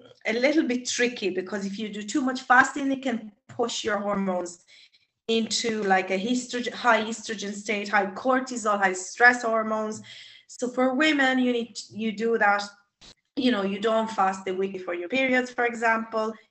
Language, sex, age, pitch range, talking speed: English, female, 30-49, 195-235 Hz, 180 wpm